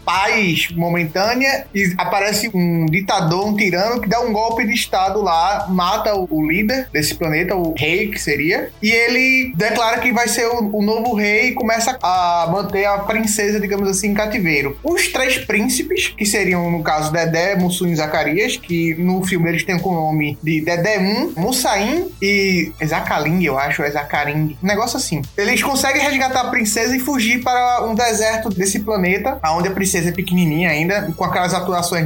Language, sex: Portuguese, male